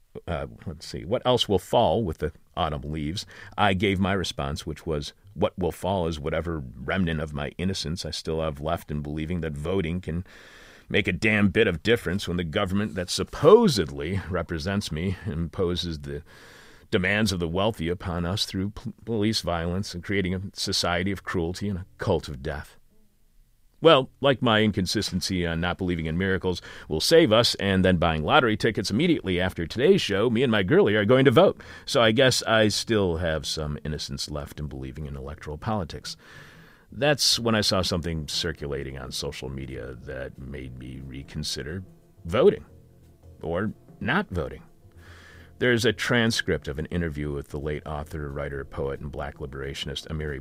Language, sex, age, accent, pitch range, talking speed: English, male, 40-59, American, 75-100 Hz, 175 wpm